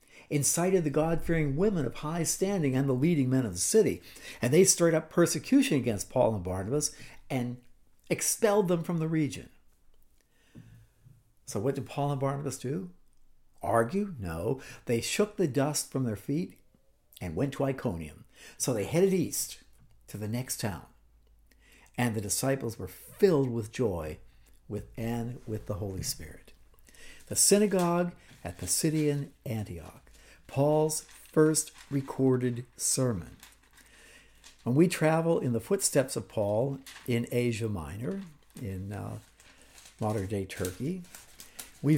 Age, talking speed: 60-79, 140 wpm